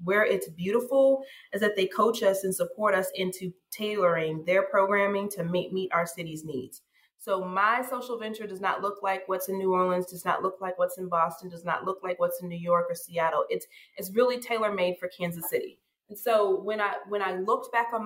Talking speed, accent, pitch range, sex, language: 220 wpm, American, 180-220 Hz, female, English